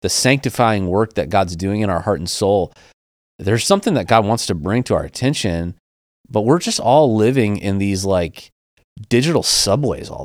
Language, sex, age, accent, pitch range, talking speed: English, male, 30-49, American, 90-125 Hz, 185 wpm